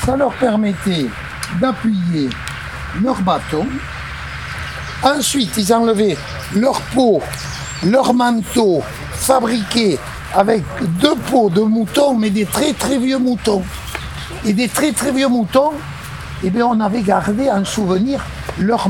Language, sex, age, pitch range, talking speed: French, male, 60-79, 155-240 Hz, 125 wpm